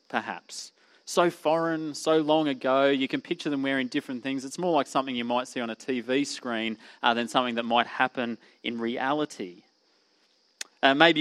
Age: 30-49